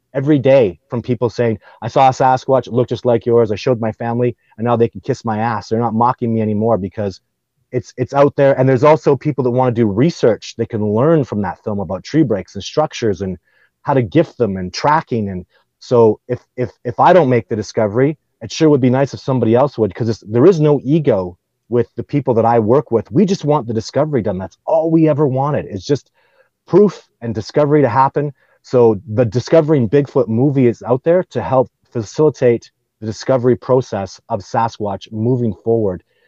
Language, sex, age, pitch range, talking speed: English, male, 30-49, 110-135 Hz, 215 wpm